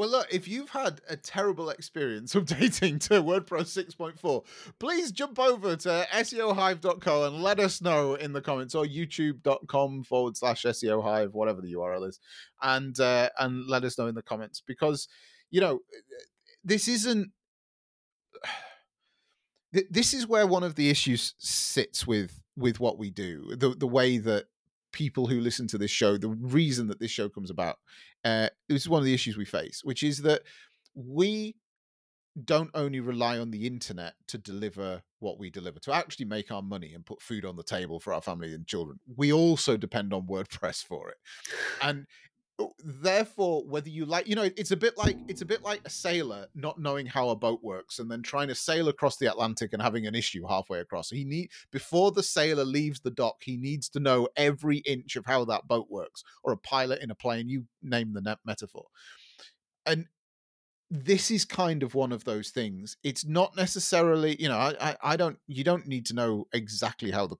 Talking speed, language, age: 195 wpm, English, 30-49